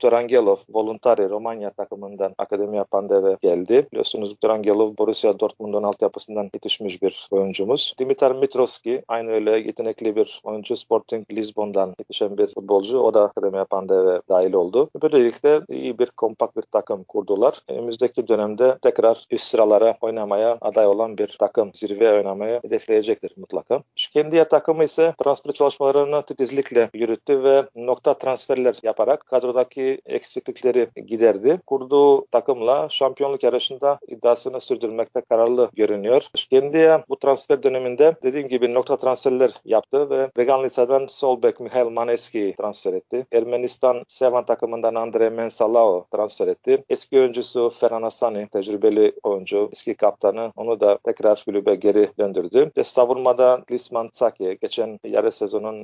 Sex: male